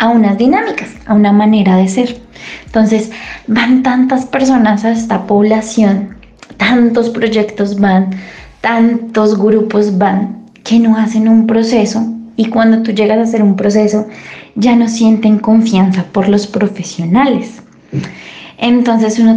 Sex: female